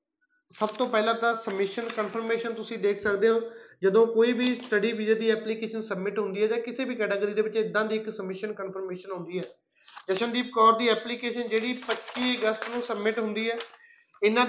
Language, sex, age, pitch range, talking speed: Punjabi, male, 30-49, 205-235 Hz, 185 wpm